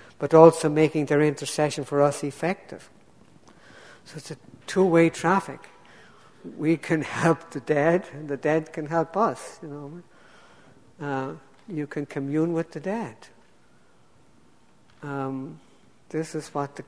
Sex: female